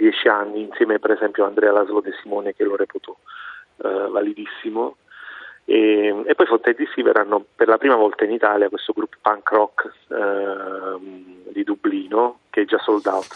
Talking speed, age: 170 wpm, 40-59